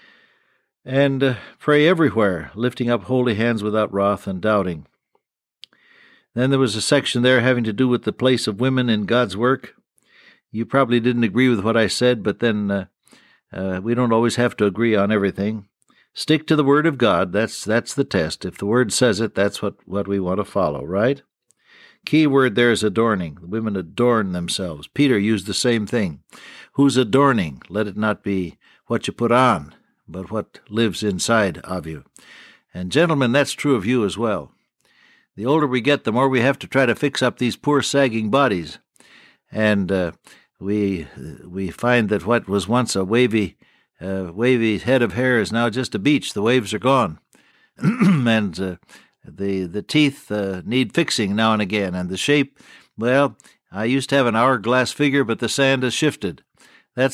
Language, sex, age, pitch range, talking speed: English, male, 60-79, 100-130 Hz, 185 wpm